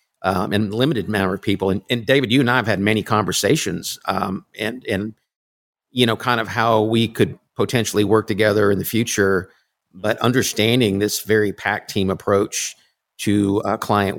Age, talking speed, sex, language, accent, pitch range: 50-69, 180 wpm, male, English, American, 100-115 Hz